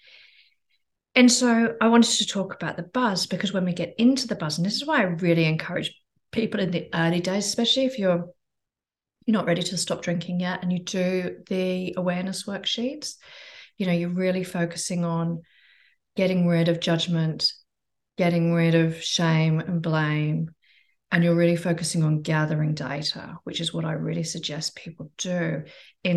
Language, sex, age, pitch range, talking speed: English, female, 30-49, 165-195 Hz, 175 wpm